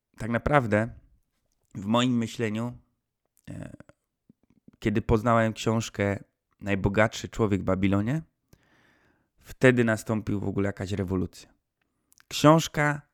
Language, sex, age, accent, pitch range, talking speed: Polish, male, 20-39, native, 100-115 Hz, 85 wpm